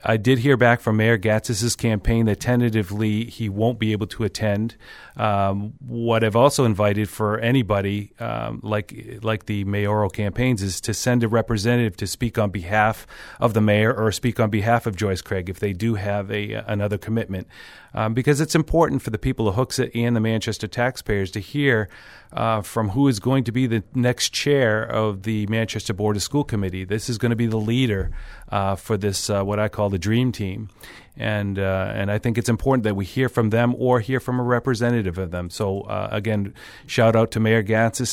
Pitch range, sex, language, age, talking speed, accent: 105-120 Hz, male, English, 40-59, 205 wpm, American